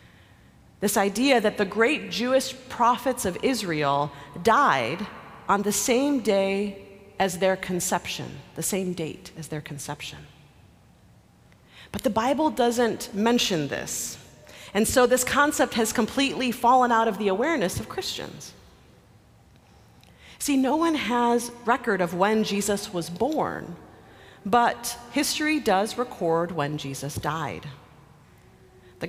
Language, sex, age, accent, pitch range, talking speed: English, female, 40-59, American, 175-240 Hz, 125 wpm